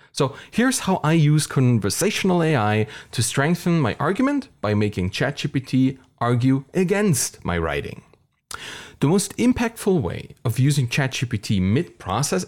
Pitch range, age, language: 110-155 Hz, 30-49, English